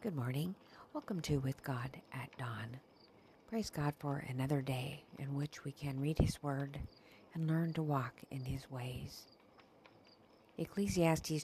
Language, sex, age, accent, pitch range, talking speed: English, female, 50-69, American, 135-165 Hz, 145 wpm